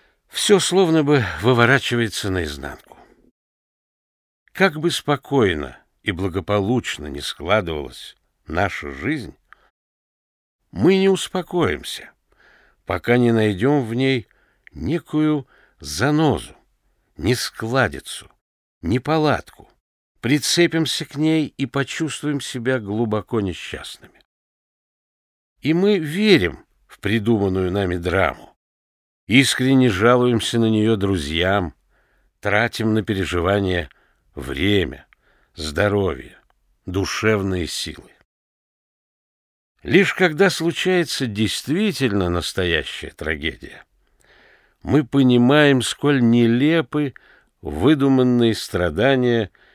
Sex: male